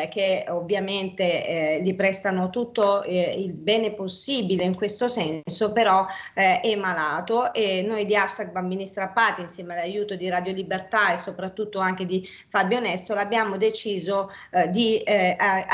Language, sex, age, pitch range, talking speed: Italian, female, 30-49, 185-220 Hz, 150 wpm